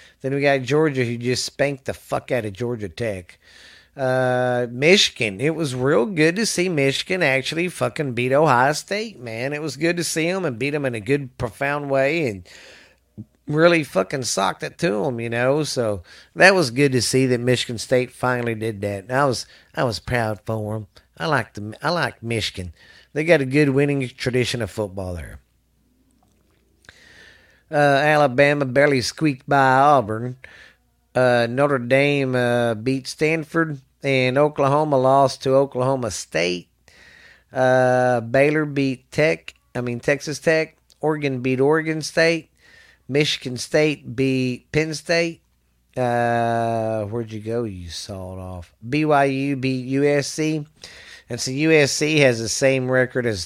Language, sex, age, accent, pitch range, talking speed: English, male, 50-69, American, 120-145 Hz, 155 wpm